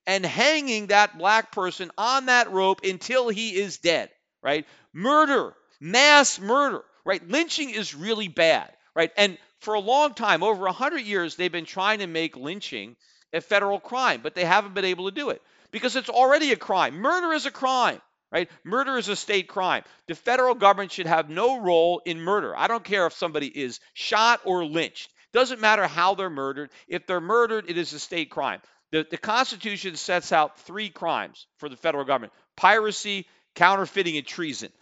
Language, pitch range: English, 170-225 Hz